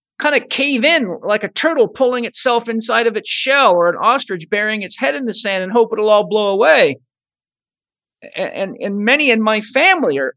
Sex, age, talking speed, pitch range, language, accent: male, 50-69, 210 wpm, 180-250 Hz, English, American